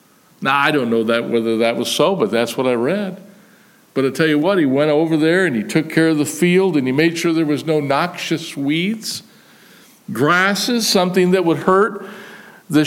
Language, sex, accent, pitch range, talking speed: English, male, American, 150-200 Hz, 210 wpm